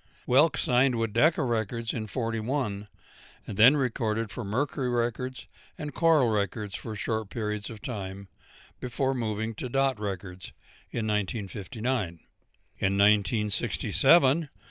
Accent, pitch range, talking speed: American, 105-130 Hz, 120 wpm